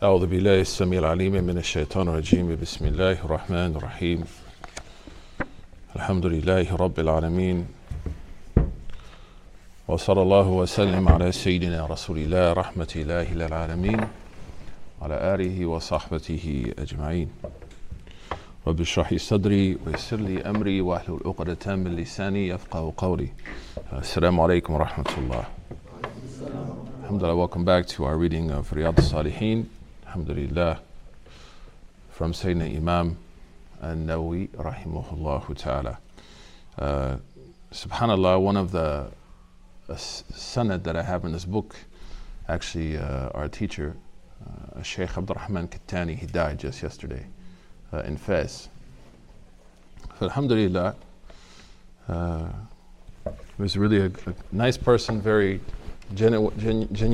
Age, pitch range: 50-69, 80-95 Hz